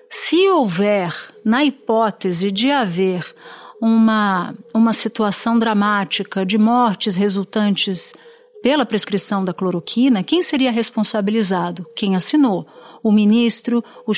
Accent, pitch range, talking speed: Brazilian, 205-255 Hz, 105 wpm